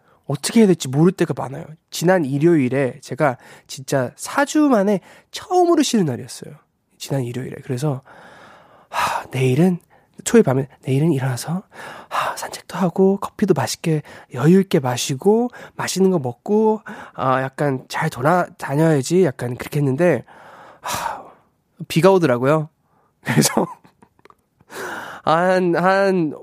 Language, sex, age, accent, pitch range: Korean, male, 20-39, native, 135-185 Hz